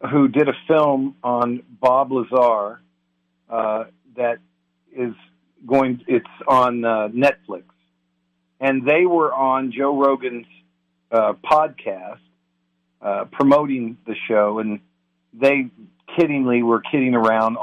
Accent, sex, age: American, male, 50-69